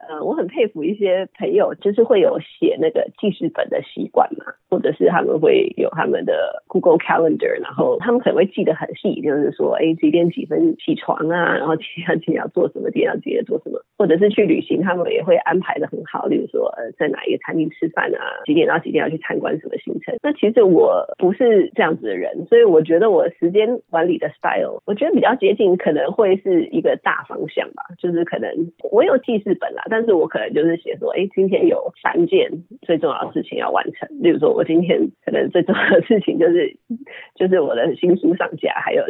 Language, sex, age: Chinese, female, 30-49